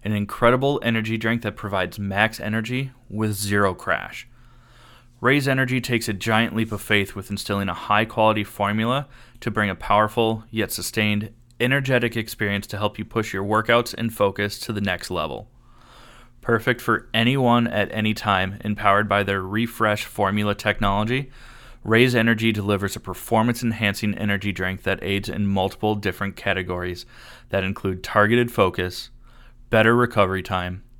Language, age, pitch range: English, 20-39, 100-120 Hz